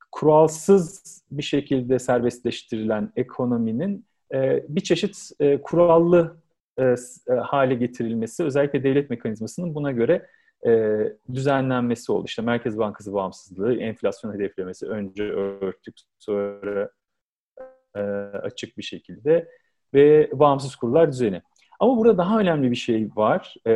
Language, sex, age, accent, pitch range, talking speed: Turkish, male, 40-59, native, 120-170 Hz, 100 wpm